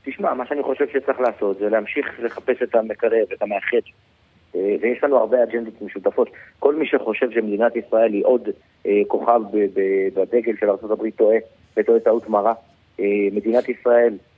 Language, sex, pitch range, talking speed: Hebrew, male, 110-150 Hz, 150 wpm